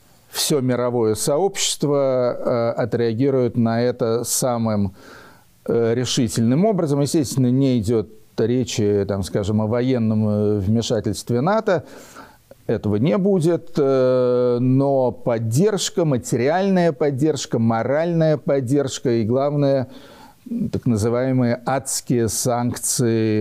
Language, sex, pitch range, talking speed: Ukrainian, male, 110-135 Hz, 85 wpm